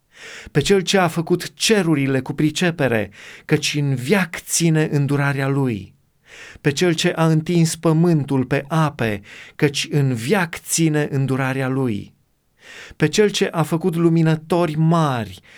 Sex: male